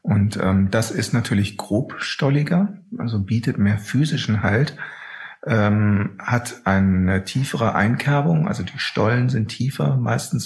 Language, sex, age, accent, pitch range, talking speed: German, male, 40-59, German, 105-135 Hz, 125 wpm